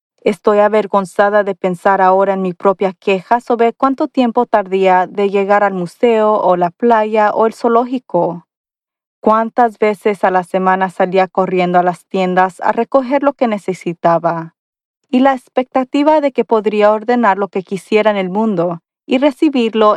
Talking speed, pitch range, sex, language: 160 wpm, 190-235 Hz, female, Spanish